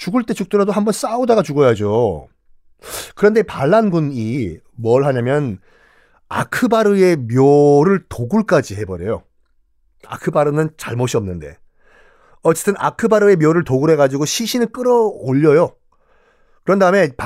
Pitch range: 125-190 Hz